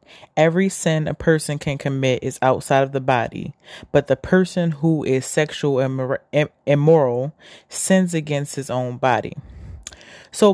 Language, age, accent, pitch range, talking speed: English, 20-39, American, 135-170 Hz, 140 wpm